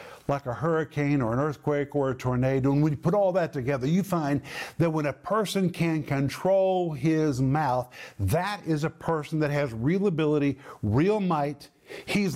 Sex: male